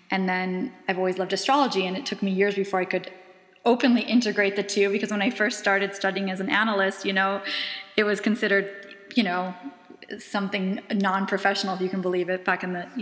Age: 20-39